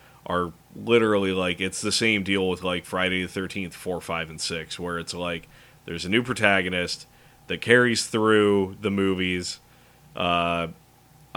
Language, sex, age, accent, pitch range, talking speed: English, male, 20-39, American, 85-110 Hz, 155 wpm